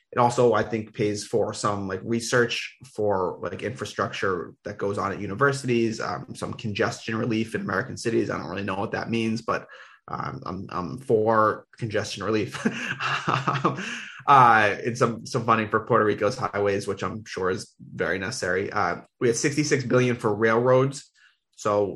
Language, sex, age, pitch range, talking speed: English, male, 20-39, 105-120 Hz, 165 wpm